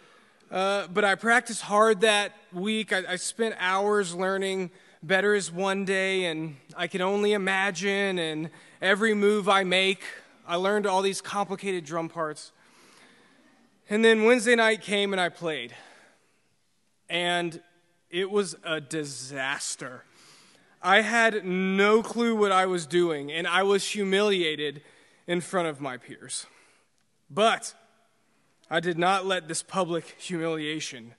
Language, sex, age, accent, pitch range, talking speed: English, male, 20-39, American, 170-210 Hz, 135 wpm